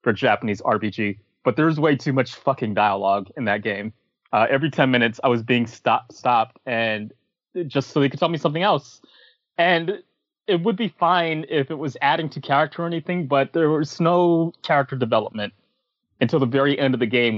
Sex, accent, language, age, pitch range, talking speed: male, American, English, 20-39, 115-155 Hz, 195 wpm